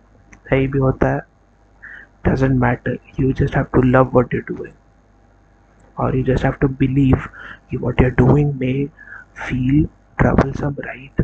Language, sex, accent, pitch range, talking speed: Hindi, male, native, 115-140 Hz, 145 wpm